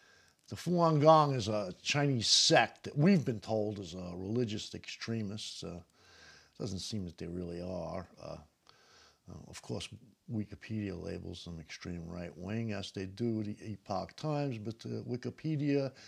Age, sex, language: 50-69, male, English